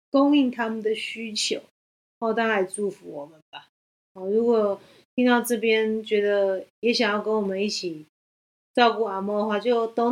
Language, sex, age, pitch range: Chinese, female, 30-49, 190-245 Hz